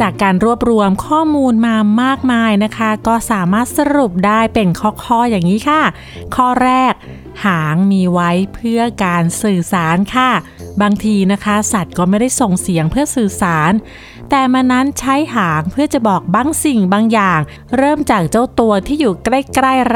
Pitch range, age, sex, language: 200-260 Hz, 30-49, female, Thai